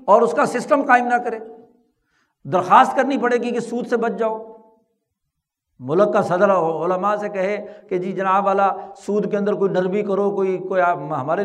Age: 60-79